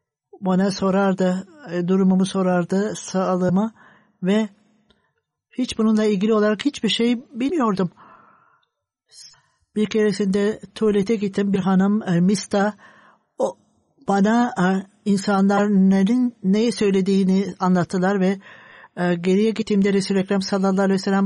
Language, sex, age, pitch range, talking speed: Turkish, male, 60-79, 190-220 Hz, 95 wpm